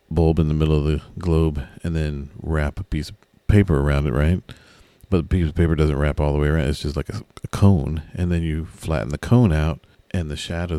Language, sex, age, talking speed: English, male, 40-59, 240 wpm